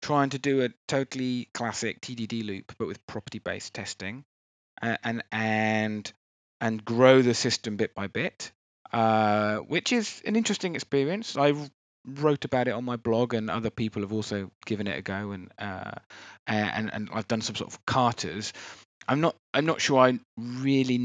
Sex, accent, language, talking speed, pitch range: male, British, English, 170 wpm, 105-130 Hz